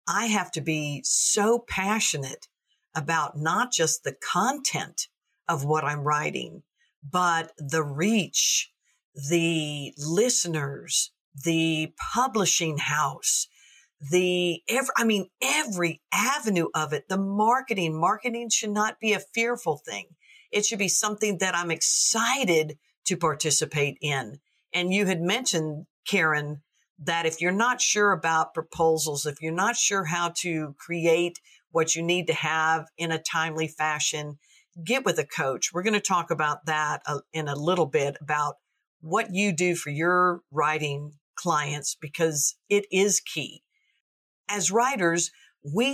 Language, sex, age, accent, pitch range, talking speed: English, female, 50-69, American, 155-205 Hz, 140 wpm